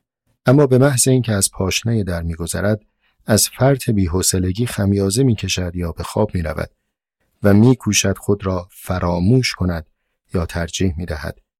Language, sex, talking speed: Persian, male, 135 wpm